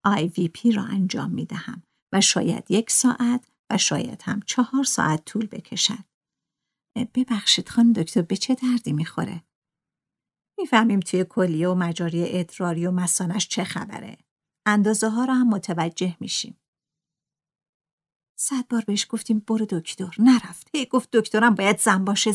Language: Persian